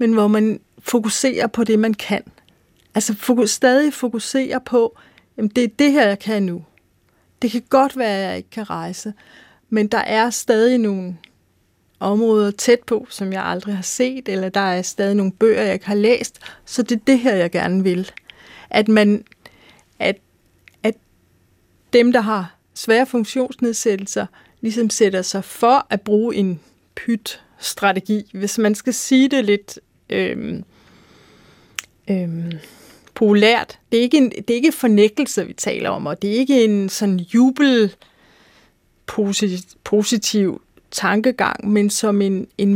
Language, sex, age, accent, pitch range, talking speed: Danish, female, 40-59, native, 200-245 Hz, 150 wpm